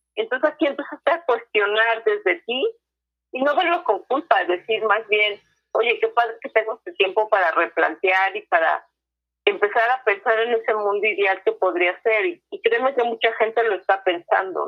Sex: female